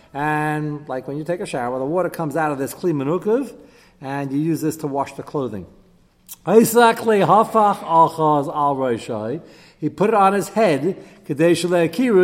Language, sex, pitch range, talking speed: English, male, 135-180 Hz, 140 wpm